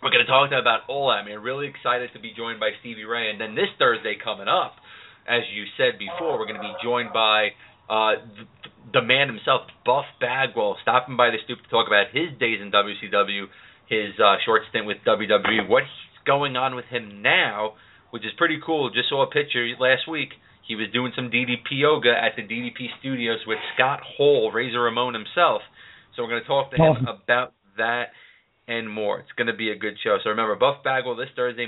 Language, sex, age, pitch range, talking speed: English, male, 30-49, 110-135 Hz, 215 wpm